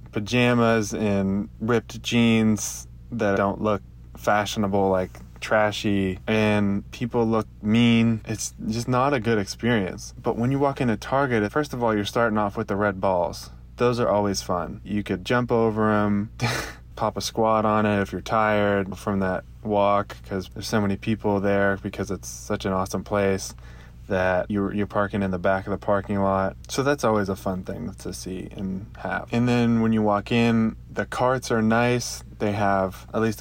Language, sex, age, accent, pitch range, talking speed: English, male, 20-39, American, 95-115 Hz, 185 wpm